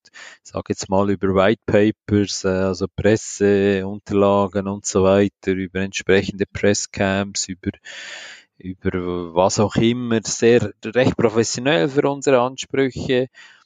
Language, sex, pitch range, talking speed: English, male, 100-125 Hz, 105 wpm